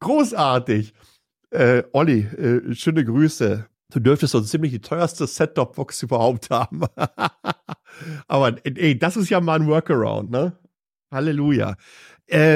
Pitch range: 105-145 Hz